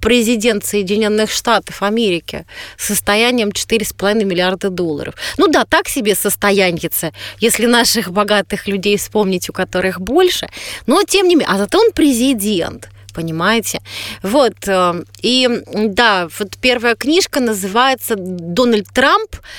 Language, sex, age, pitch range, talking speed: Russian, female, 30-49, 190-250 Hz, 120 wpm